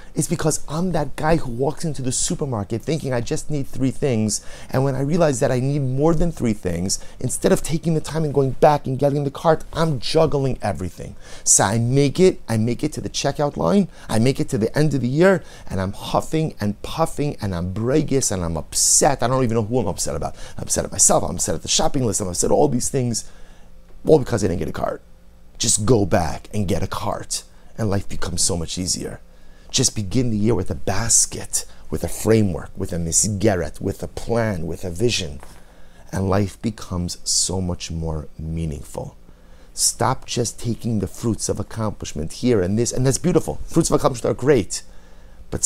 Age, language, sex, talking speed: 30-49, English, male, 215 wpm